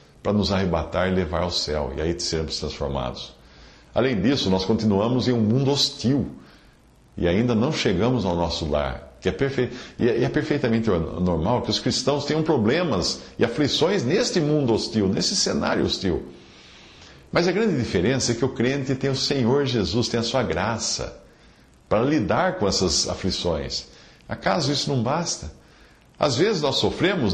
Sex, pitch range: male, 90-140 Hz